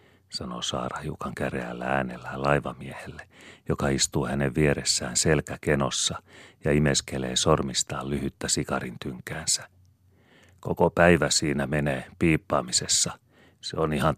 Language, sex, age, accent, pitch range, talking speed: Finnish, male, 40-59, native, 65-85 Hz, 105 wpm